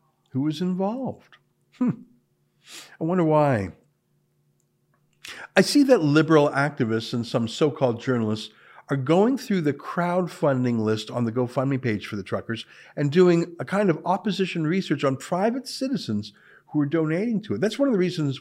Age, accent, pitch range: 50-69, American, 115-175 Hz